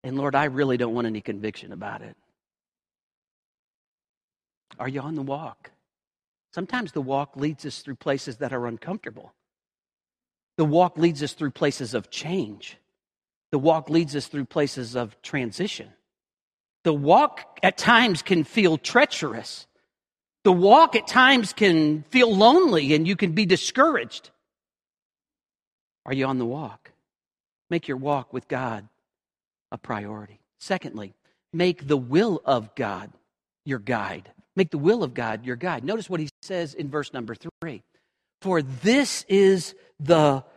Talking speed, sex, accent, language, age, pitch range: 145 wpm, male, American, English, 50-69, 130-170 Hz